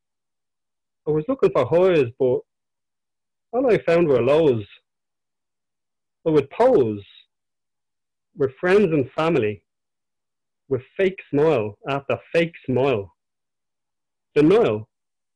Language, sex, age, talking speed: English, male, 30-49, 100 wpm